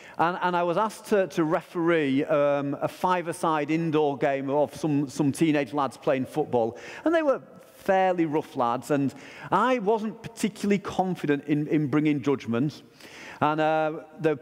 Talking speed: 160 wpm